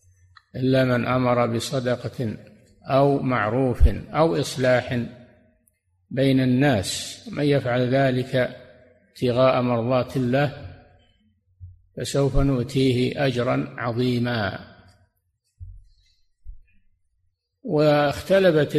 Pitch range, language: 105-135 Hz, Arabic